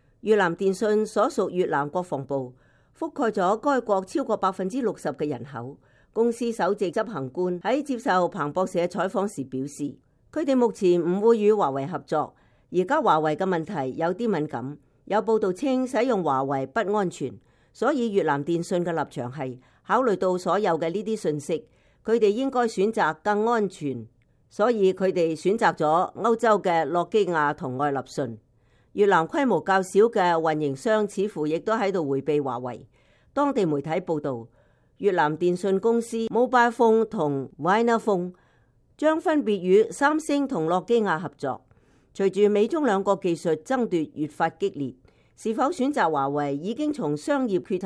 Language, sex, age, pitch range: English, female, 50-69, 145-215 Hz